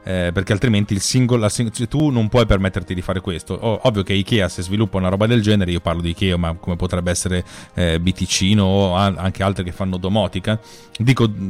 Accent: native